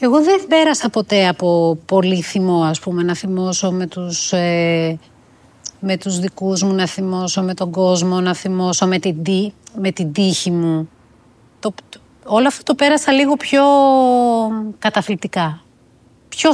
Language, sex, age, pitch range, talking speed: Greek, female, 30-49, 185-225 Hz, 150 wpm